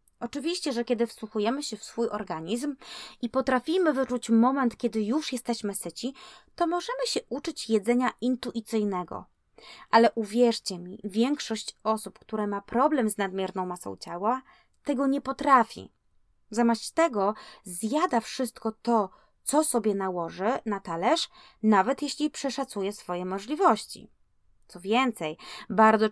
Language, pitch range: Polish, 205-260 Hz